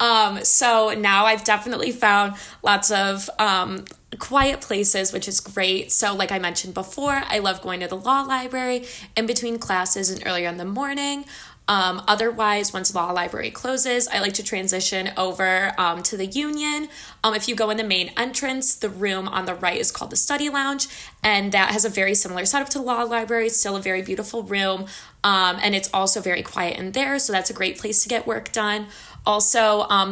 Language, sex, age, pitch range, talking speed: English, female, 20-39, 190-240 Hz, 205 wpm